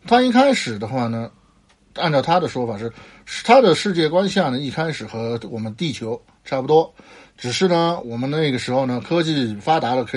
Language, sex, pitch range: Chinese, male, 120-170 Hz